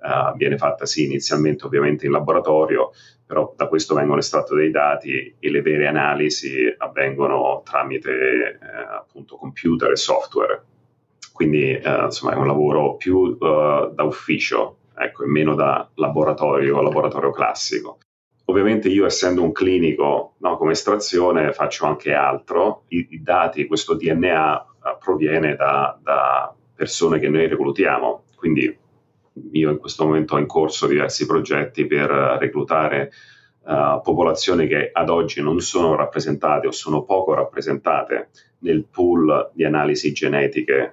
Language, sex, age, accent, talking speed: Italian, male, 40-59, native, 140 wpm